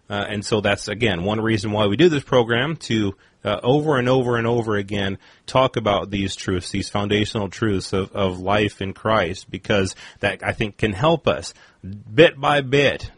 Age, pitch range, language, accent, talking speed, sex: 30-49, 100-125 Hz, English, American, 190 wpm, male